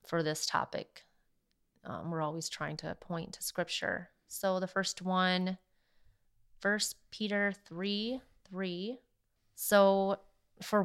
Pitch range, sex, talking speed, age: 175-210 Hz, female, 115 wpm, 30-49